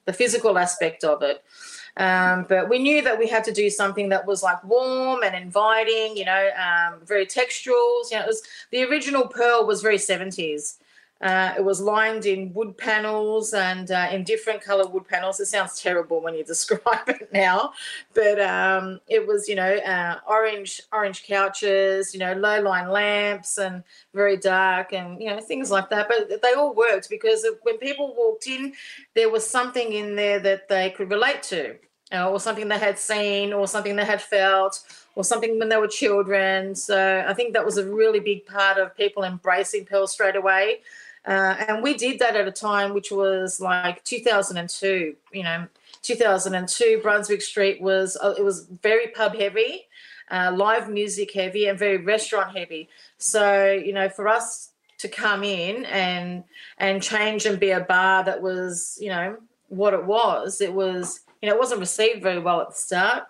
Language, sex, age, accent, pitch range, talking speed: English, female, 30-49, Australian, 190-225 Hz, 190 wpm